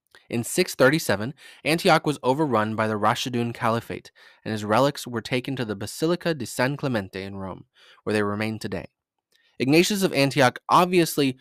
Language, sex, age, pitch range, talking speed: English, male, 20-39, 110-150 Hz, 160 wpm